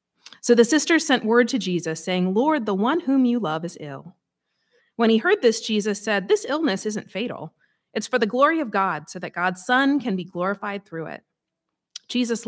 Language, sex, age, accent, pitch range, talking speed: English, female, 30-49, American, 175-235 Hz, 200 wpm